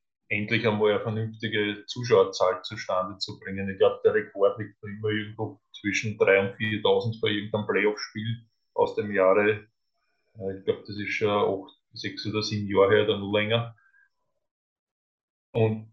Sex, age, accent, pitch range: male, 20-39, Austrian, 100-110 Hz